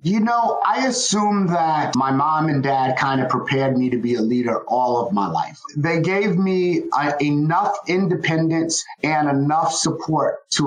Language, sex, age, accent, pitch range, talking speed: English, male, 30-49, American, 150-190 Hz, 170 wpm